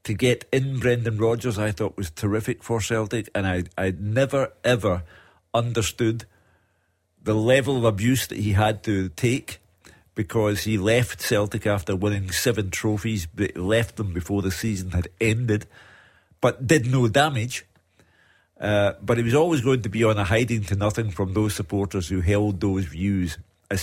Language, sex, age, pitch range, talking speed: English, male, 50-69, 100-120 Hz, 170 wpm